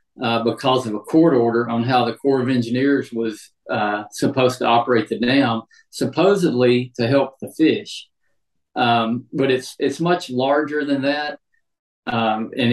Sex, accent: male, American